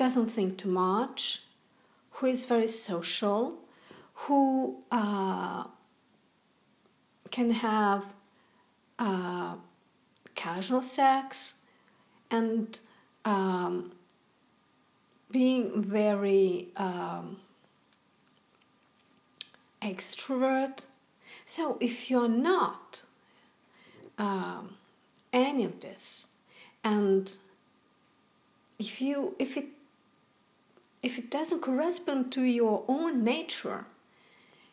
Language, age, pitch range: English, 50-69, 210-275 Hz